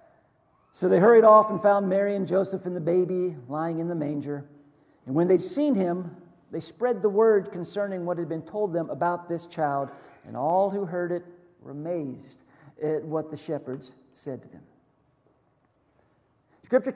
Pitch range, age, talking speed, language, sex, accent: 165-220 Hz, 50-69, 175 wpm, English, male, American